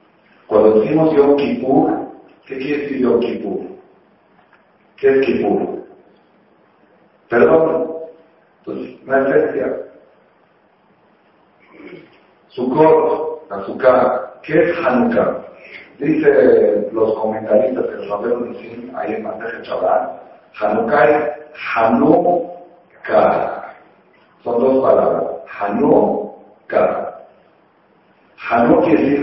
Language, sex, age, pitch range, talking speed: Spanish, male, 50-69, 120-155 Hz, 75 wpm